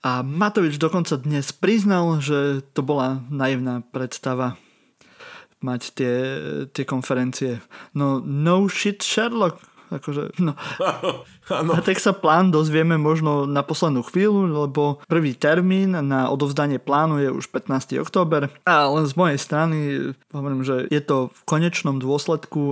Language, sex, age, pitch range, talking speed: Slovak, male, 20-39, 140-160 Hz, 130 wpm